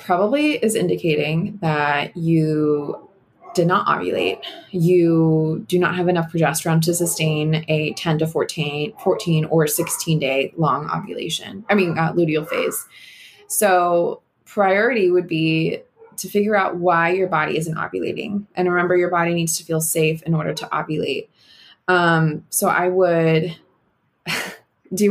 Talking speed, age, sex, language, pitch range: 145 wpm, 20-39, female, English, 160-180 Hz